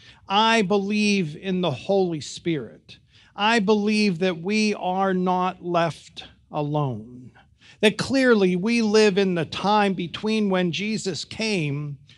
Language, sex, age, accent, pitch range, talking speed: English, male, 50-69, American, 155-205 Hz, 125 wpm